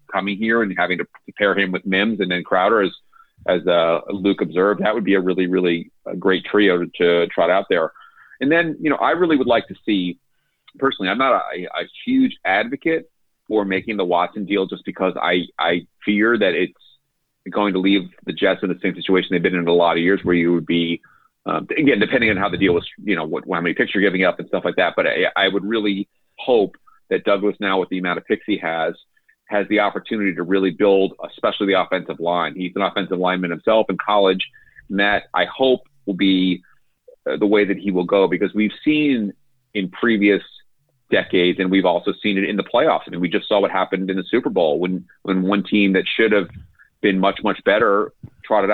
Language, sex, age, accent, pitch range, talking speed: English, male, 30-49, American, 95-105 Hz, 225 wpm